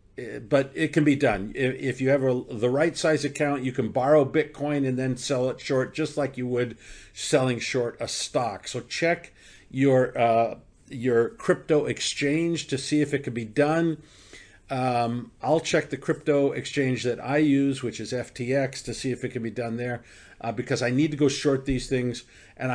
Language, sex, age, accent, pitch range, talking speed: English, male, 50-69, American, 120-150 Hz, 195 wpm